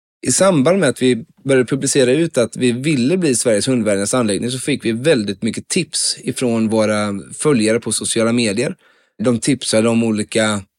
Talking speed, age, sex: 175 wpm, 20-39, male